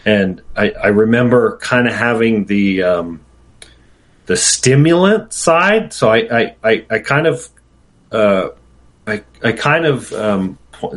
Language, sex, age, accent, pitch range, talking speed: English, male, 40-59, American, 105-140 Hz, 135 wpm